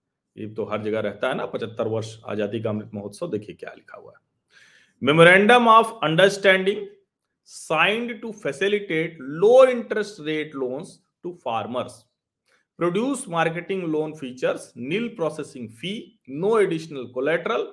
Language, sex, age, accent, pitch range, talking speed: Hindi, male, 40-59, native, 135-215 Hz, 75 wpm